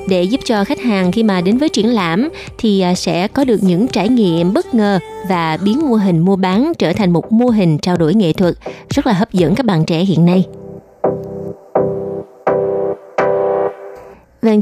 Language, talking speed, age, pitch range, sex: Vietnamese, 185 wpm, 20-39, 175-230 Hz, female